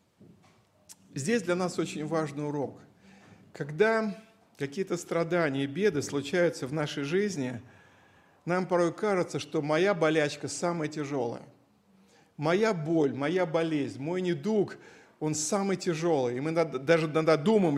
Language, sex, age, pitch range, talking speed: Russian, male, 50-69, 155-210 Hz, 120 wpm